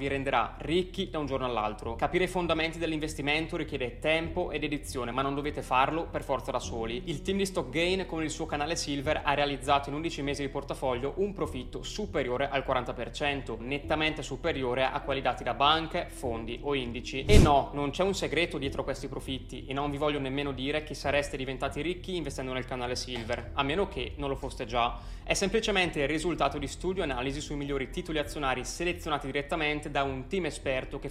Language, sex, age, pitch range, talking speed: Italian, male, 20-39, 130-160 Hz, 200 wpm